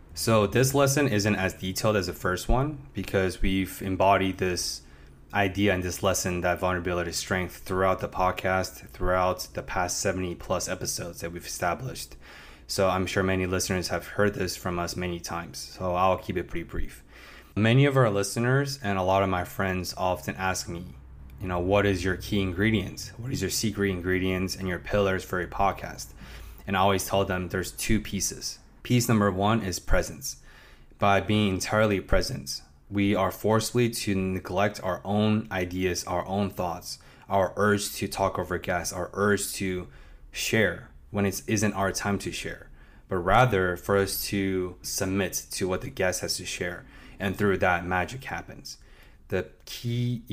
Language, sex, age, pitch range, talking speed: English, male, 20-39, 90-100 Hz, 175 wpm